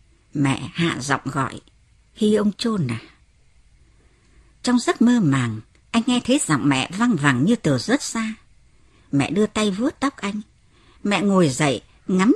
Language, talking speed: Vietnamese, 160 wpm